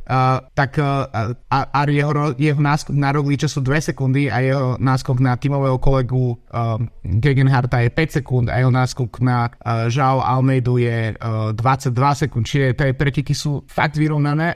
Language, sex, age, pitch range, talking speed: Slovak, male, 30-49, 120-140 Hz, 175 wpm